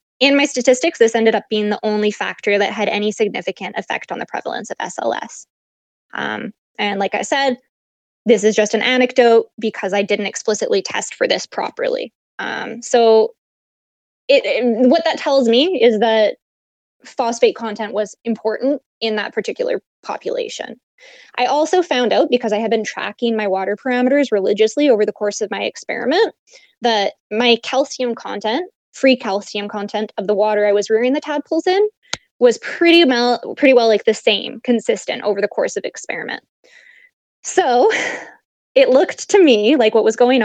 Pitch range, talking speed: 215-290 Hz, 170 wpm